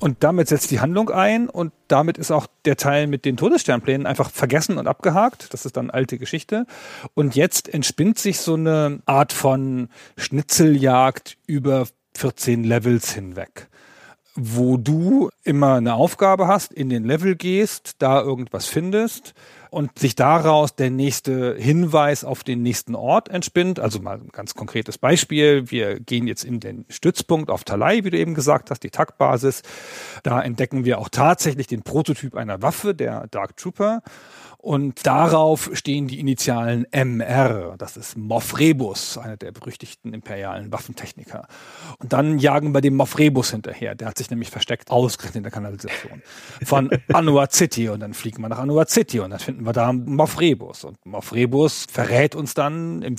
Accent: German